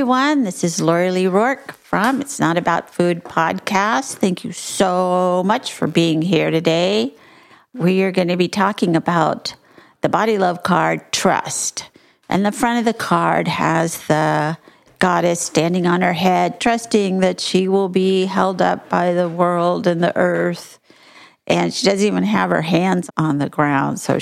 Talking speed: 170 wpm